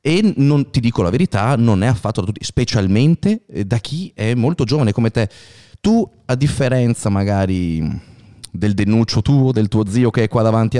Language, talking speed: Italian, 185 wpm